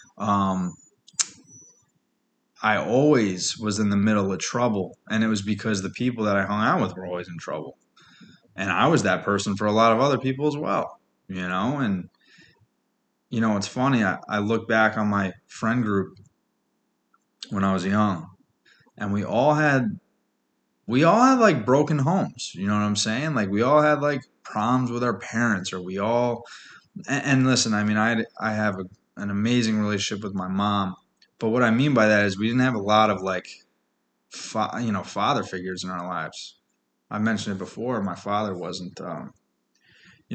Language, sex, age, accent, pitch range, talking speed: English, male, 20-39, American, 95-115 Hz, 190 wpm